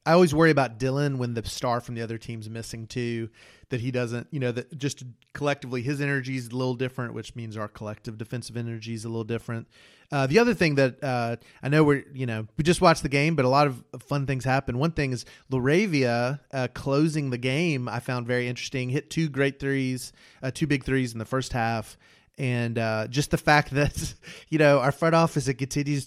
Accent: American